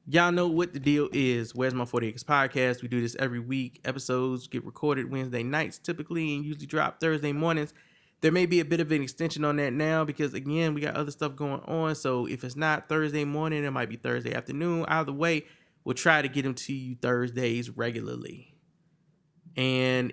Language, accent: English, American